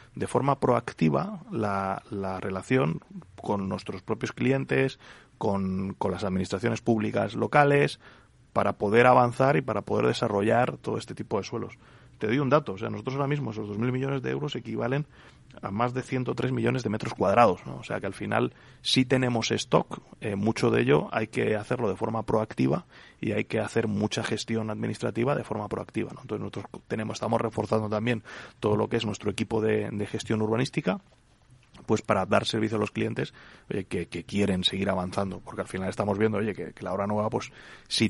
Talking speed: 195 wpm